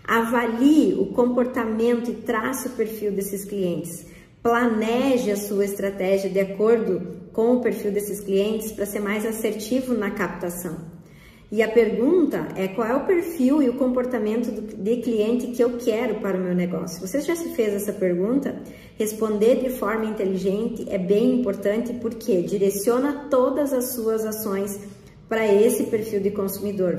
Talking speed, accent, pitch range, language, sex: 155 wpm, Brazilian, 195-240 Hz, Portuguese, male